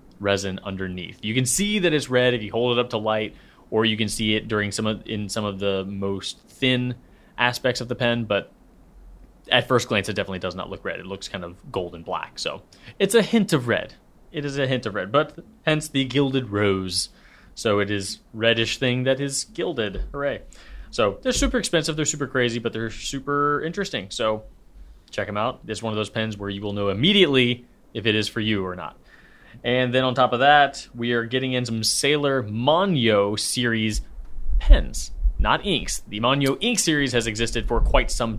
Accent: American